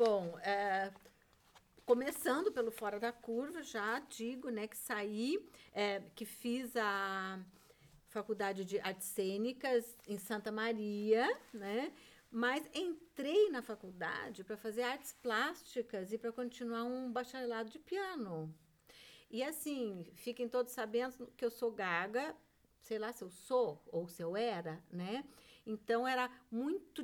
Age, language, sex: 50-69, Portuguese, female